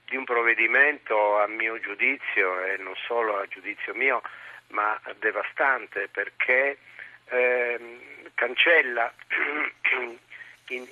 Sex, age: male, 50-69